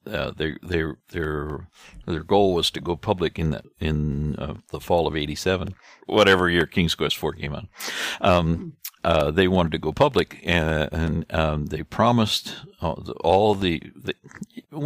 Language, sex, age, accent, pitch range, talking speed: English, male, 60-79, American, 80-95 Hz, 160 wpm